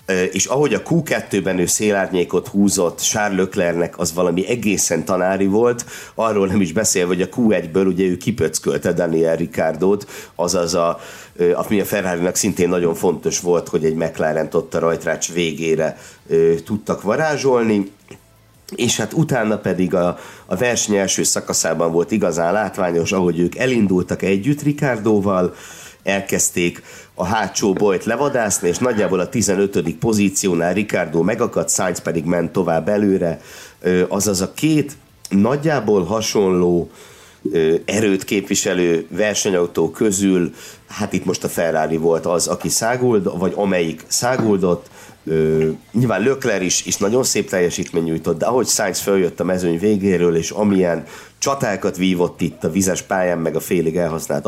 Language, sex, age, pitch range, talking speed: Hungarian, male, 50-69, 85-105 Hz, 140 wpm